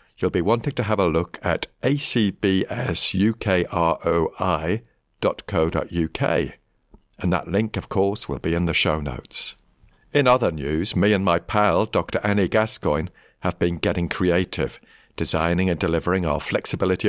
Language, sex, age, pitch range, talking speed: English, male, 50-69, 80-105 Hz, 135 wpm